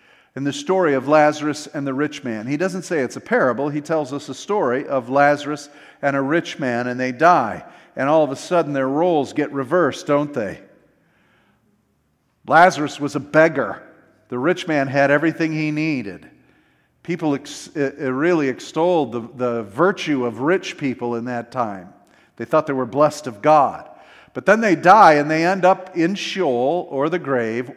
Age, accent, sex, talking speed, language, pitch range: 50-69, American, male, 180 wpm, English, 135-165 Hz